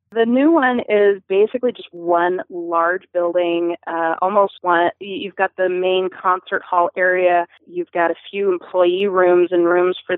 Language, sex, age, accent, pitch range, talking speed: English, female, 30-49, American, 180-280 Hz, 165 wpm